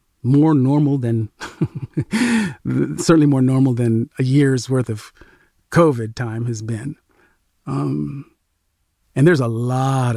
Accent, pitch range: American, 90-130 Hz